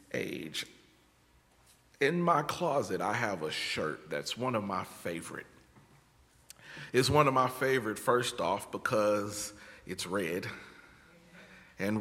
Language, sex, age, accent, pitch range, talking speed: English, male, 40-59, American, 105-130 Hz, 120 wpm